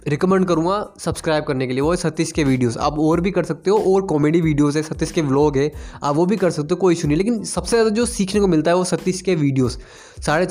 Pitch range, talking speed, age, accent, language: 150-185 Hz, 265 wpm, 20-39, native, Hindi